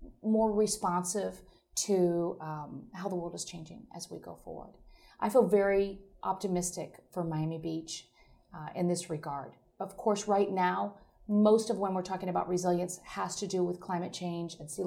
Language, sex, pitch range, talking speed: English, female, 175-225 Hz, 175 wpm